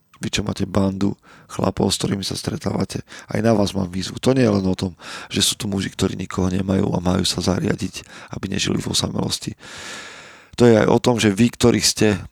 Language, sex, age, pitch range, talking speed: Slovak, male, 40-59, 95-110 Hz, 215 wpm